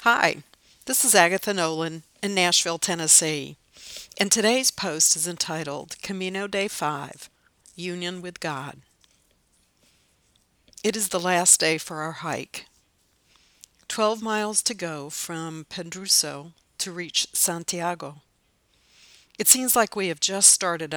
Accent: American